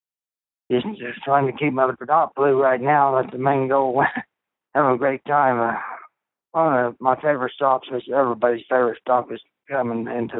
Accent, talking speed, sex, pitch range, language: American, 180 wpm, male, 120-140 Hz, English